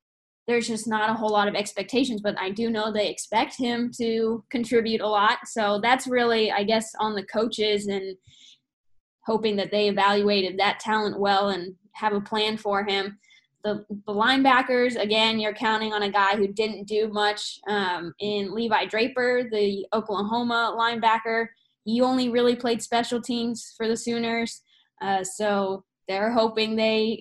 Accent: American